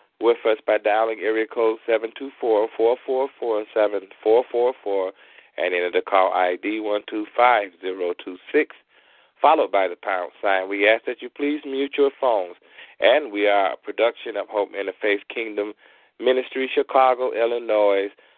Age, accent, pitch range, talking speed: 40-59, American, 105-130 Hz, 125 wpm